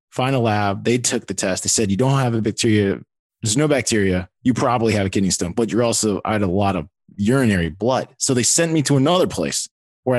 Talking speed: 235 wpm